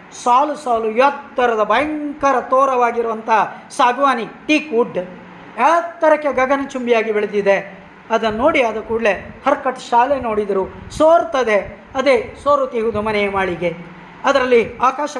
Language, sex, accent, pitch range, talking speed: Kannada, female, native, 210-275 Hz, 105 wpm